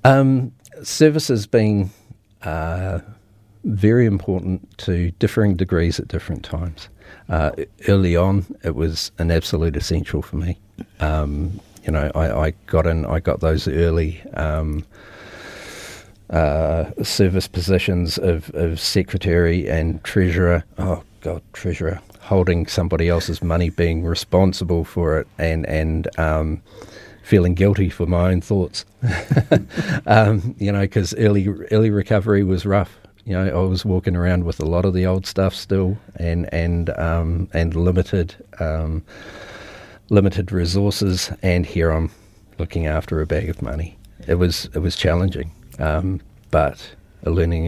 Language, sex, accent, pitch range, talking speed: English, male, Australian, 85-100 Hz, 140 wpm